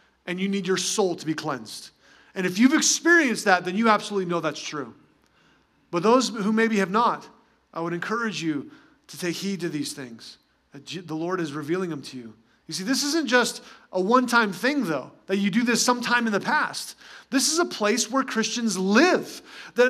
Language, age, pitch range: English, 30-49, 170-235 Hz